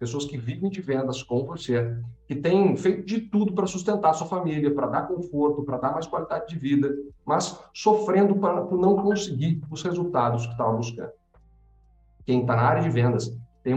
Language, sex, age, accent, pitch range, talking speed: Portuguese, male, 50-69, Brazilian, 120-160 Hz, 185 wpm